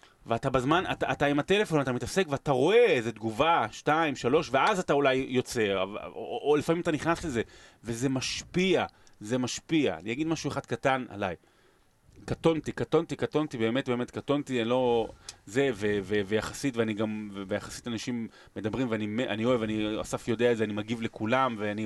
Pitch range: 110-145 Hz